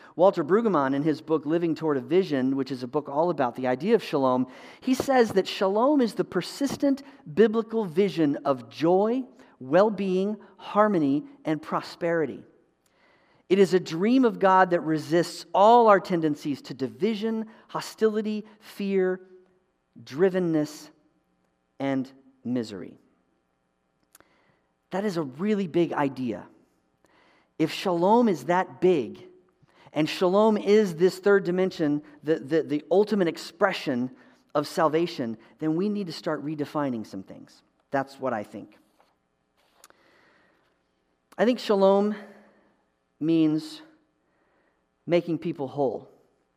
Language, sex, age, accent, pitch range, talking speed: English, male, 40-59, American, 135-195 Hz, 120 wpm